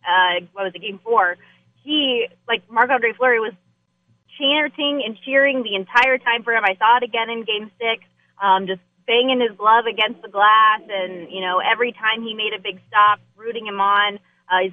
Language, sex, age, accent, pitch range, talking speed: English, female, 20-39, American, 195-230 Hz, 200 wpm